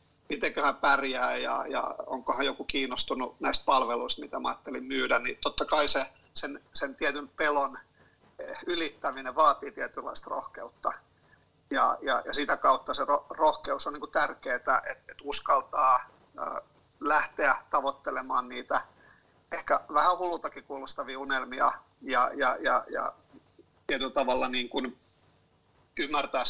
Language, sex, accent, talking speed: Finnish, male, native, 130 wpm